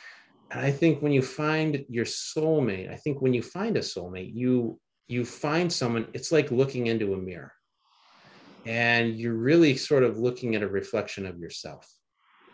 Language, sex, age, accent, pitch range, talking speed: English, male, 30-49, American, 110-135 Hz, 170 wpm